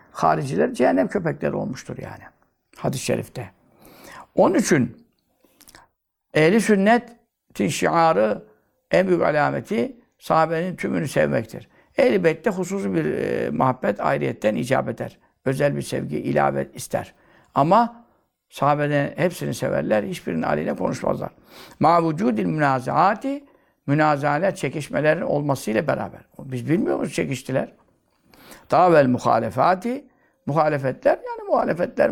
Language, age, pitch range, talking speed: Turkish, 60-79, 145-230 Hz, 100 wpm